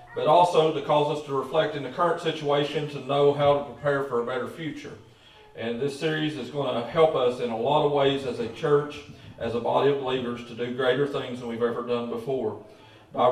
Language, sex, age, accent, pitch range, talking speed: English, male, 40-59, American, 120-150 Hz, 230 wpm